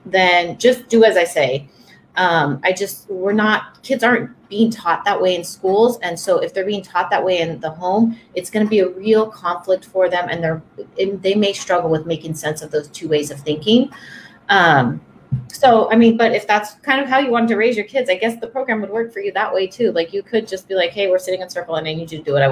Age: 30-49